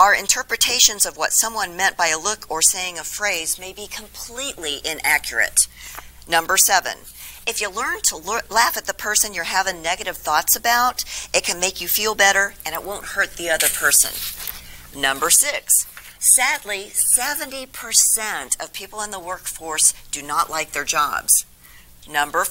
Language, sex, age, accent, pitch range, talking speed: English, female, 50-69, American, 165-230 Hz, 160 wpm